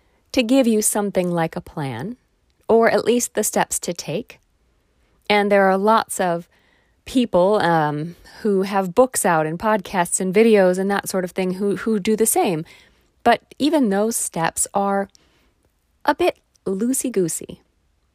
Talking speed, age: 155 wpm, 40-59